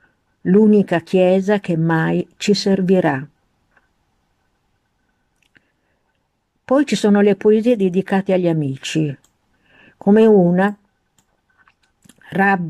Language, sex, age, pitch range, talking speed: Italian, female, 50-69, 160-190 Hz, 75 wpm